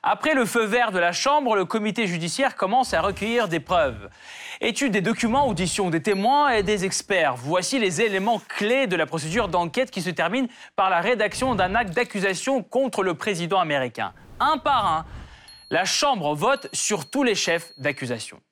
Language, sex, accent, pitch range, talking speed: French, male, French, 160-235 Hz, 180 wpm